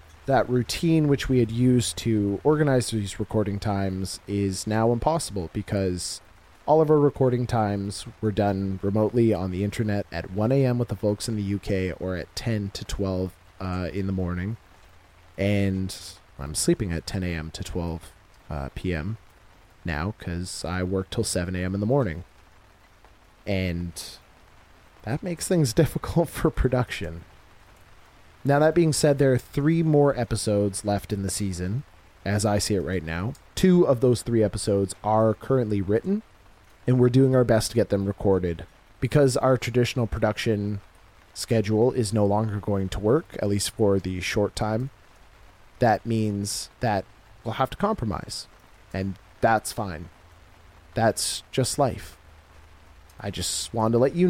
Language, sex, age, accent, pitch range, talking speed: English, male, 30-49, American, 90-115 Hz, 155 wpm